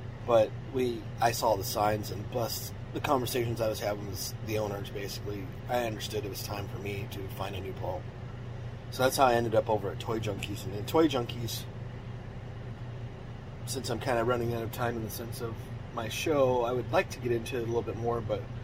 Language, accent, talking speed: English, American, 220 wpm